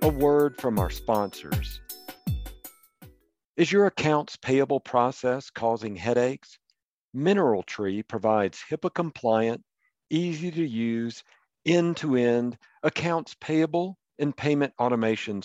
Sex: male